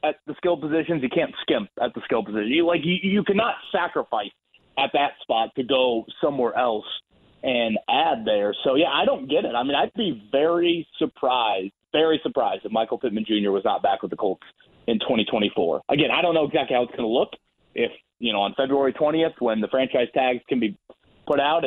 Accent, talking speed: American, 215 wpm